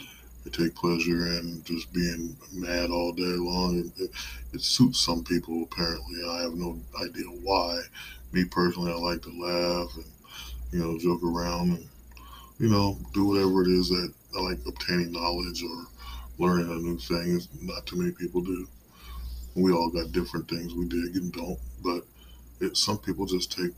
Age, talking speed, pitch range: 20-39, 175 wpm, 80-90 Hz